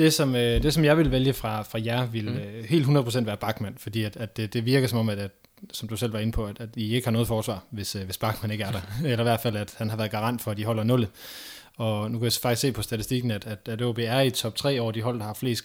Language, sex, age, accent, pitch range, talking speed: Danish, male, 20-39, native, 110-125 Hz, 305 wpm